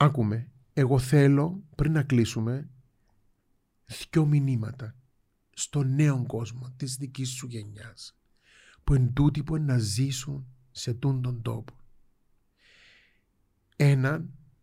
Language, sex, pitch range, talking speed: Greek, male, 120-170 Hz, 115 wpm